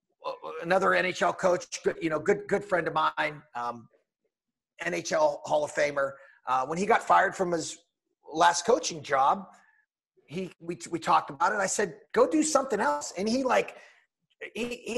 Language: English